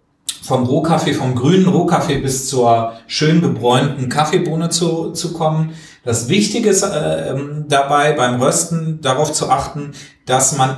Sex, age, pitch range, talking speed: male, 40-59, 125-160 Hz, 140 wpm